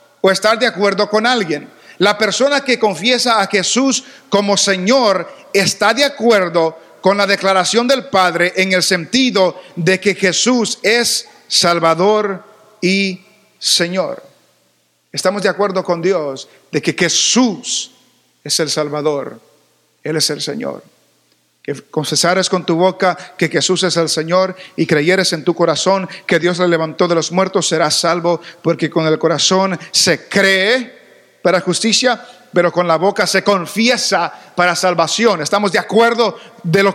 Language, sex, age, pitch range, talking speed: English, male, 50-69, 180-225 Hz, 150 wpm